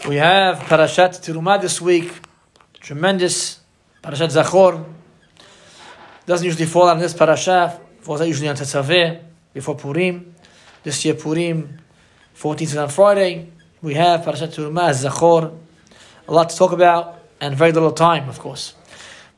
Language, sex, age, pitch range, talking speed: English, male, 20-39, 155-180 Hz, 135 wpm